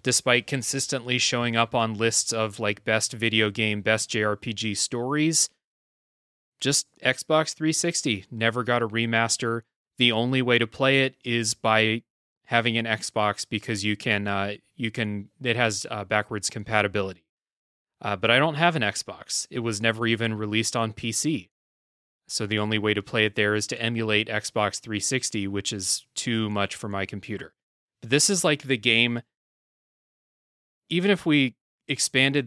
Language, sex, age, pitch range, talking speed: English, male, 30-49, 105-125 Hz, 160 wpm